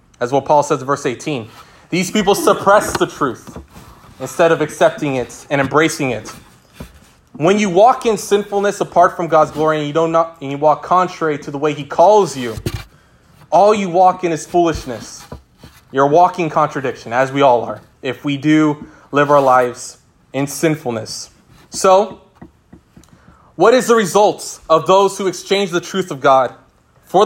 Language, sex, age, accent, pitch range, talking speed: English, male, 20-39, American, 130-175 Hz, 165 wpm